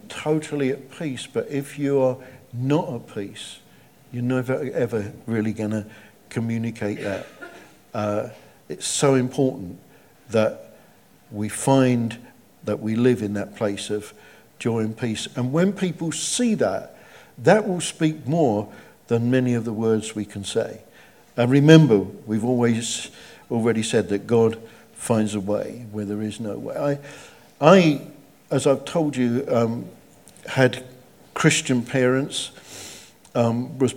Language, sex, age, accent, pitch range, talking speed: English, male, 50-69, British, 110-130 Hz, 140 wpm